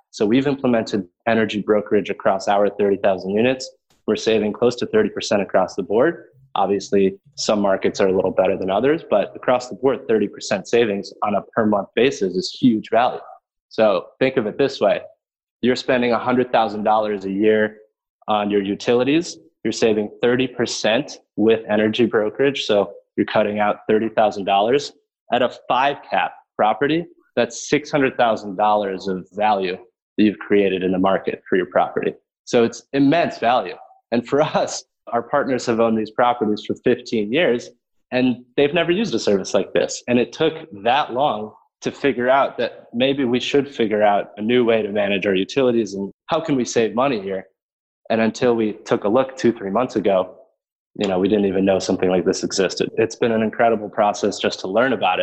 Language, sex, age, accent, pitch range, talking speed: English, male, 20-39, American, 105-130 Hz, 180 wpm